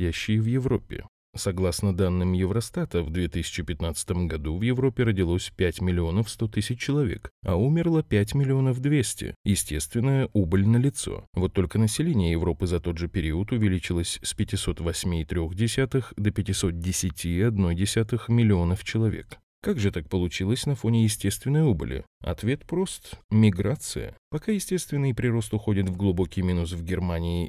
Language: Russian